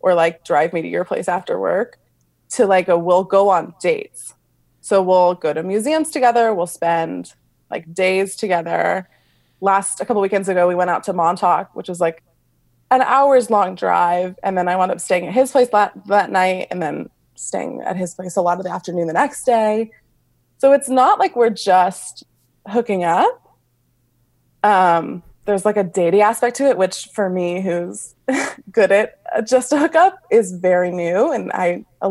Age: 20-39